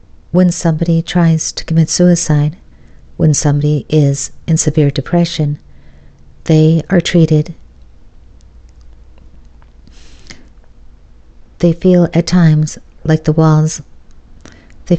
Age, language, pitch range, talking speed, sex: 50-69, English, 105-170 Hz, 90 wpm, female